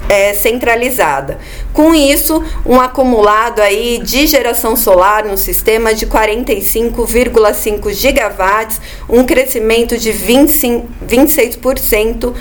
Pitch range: 210-260 Hz